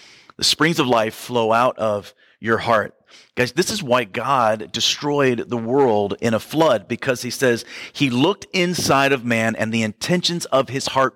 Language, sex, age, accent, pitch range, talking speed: English, male, 40-59, American, 115-145 Hz, 185 wpm